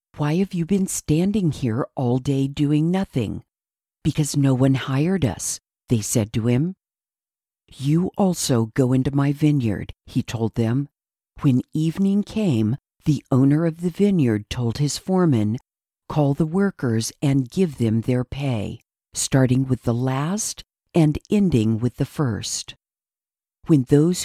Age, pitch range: 50-69, 125-175 Hz